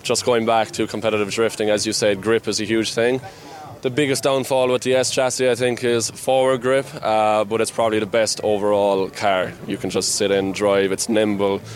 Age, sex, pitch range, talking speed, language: 20-39, male, 105-125 Hz, 215 wpm, English